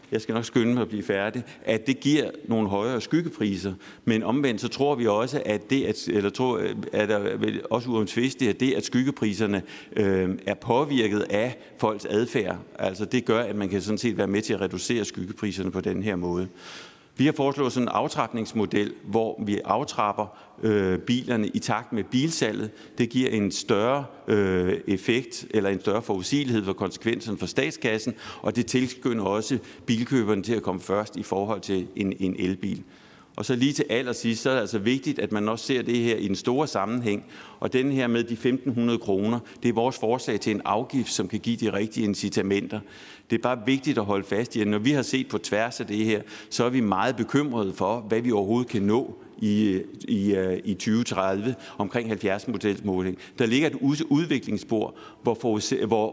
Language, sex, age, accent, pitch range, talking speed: Danish, male, 60-79, native, 105-125 Hz, 185 wpm